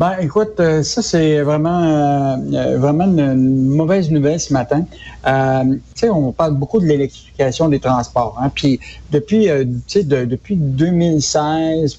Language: French